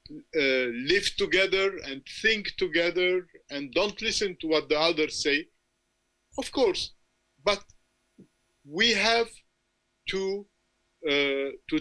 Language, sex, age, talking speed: English, male, 50-69, 110 wpm